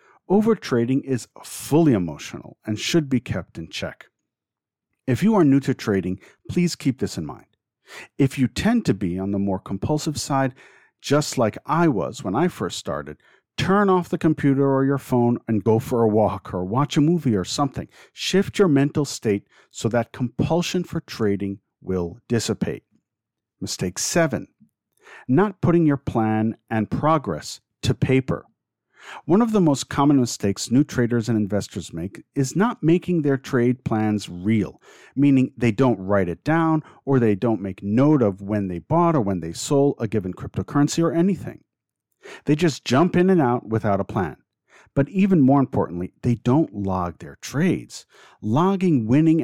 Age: 50-69